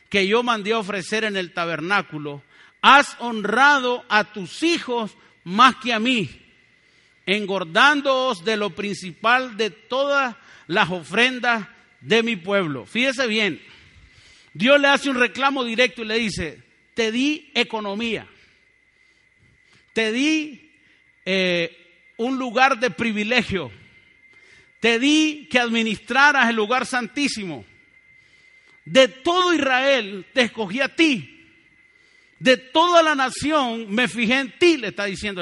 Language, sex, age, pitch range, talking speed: Spanish, male, 40-59, 180-260 Hz, 125 wpm